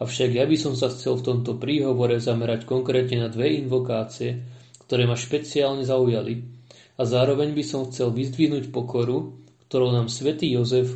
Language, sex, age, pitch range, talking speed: Slovak, male, 30-49, 120-135 Hz, 160 wpm